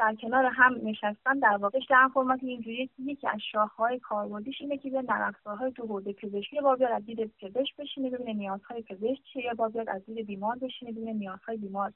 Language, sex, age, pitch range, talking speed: Persian, female, 30-49, 210-265 Hz, 200 wpm